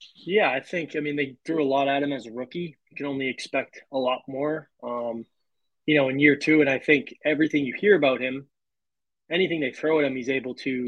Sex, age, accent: male, 20-39, American